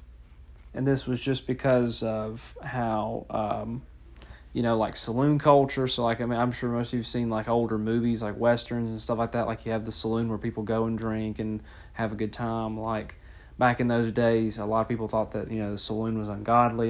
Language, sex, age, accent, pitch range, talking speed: English, male, 30-49, American, 110-120 Hz, 230 wpm